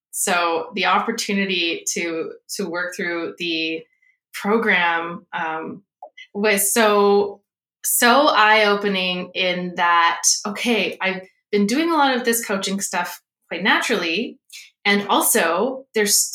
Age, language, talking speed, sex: 20-39, English, 115 wpm, female